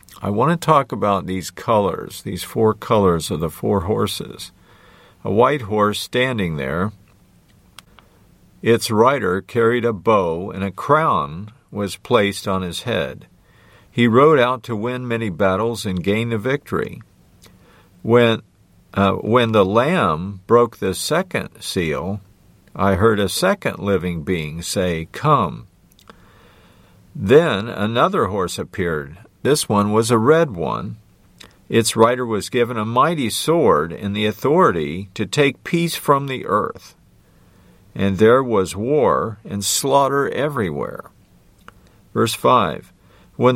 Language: English